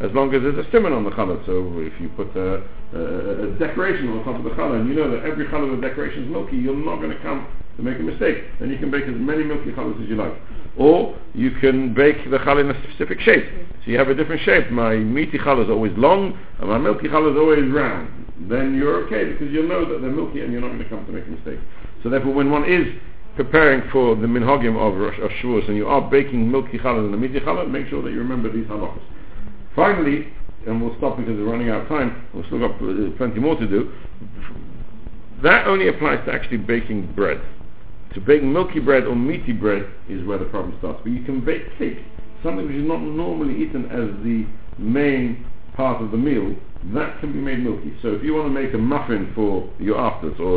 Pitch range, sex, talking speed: 110-145 Hz, male, 235 wpm